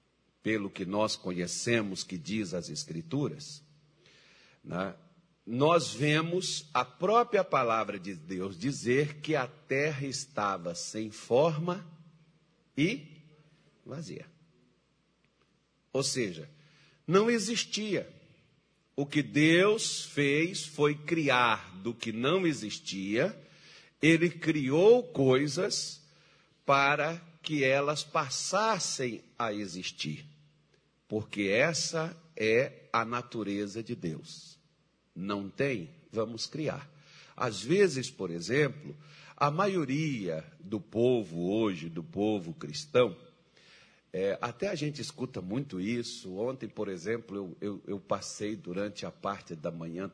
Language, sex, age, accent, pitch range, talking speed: Portuguese, male, 50-69, Brazilian, 105-155 Hz, 105 wpm